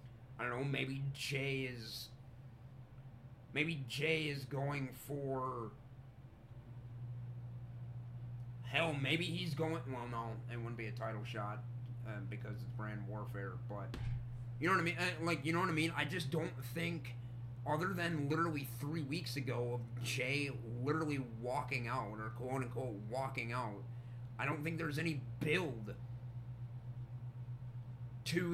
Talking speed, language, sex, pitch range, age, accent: 140 wpm, English, male, 120-135 Hz, 30-49, American